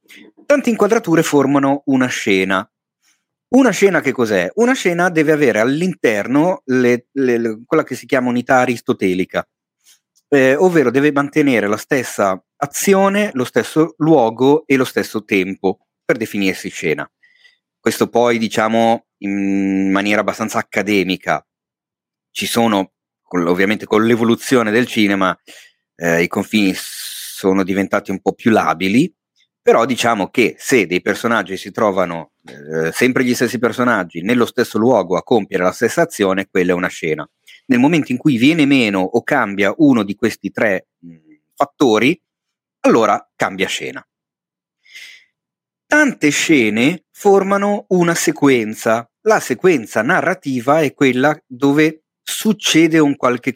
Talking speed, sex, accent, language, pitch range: 130 wpm, male, native, Italian, 105-170 Hz